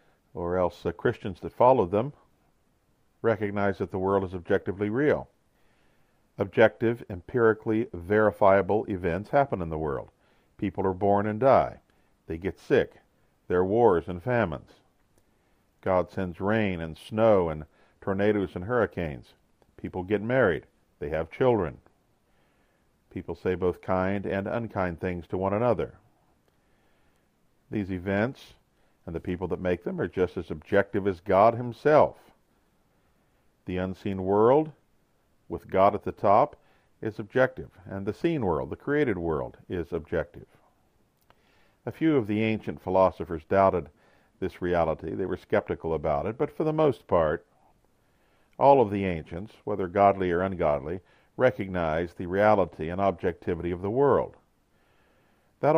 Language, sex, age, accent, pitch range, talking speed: English, male, 50-69, American, 90-110 Hz, 140 wpm